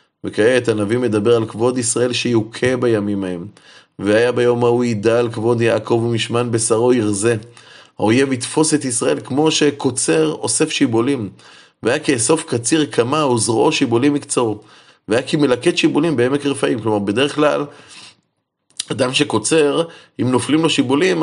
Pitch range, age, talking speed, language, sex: 115-145 Hz, 30-49, 135 wpm, Hebrew, male